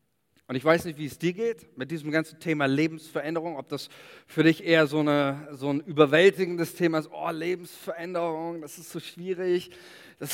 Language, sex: German, male